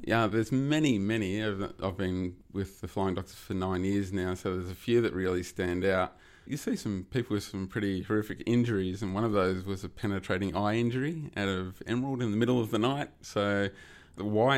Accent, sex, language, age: Australian, male, English, 30-49